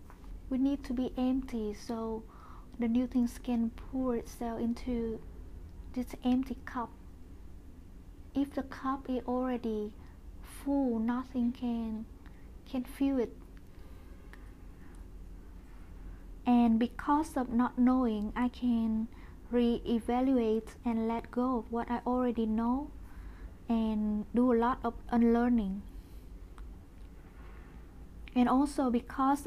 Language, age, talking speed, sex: English, 20-39, 105 wpm, female